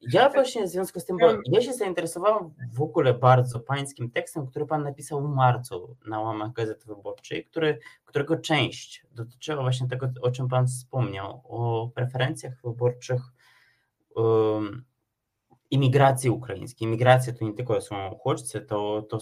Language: Polish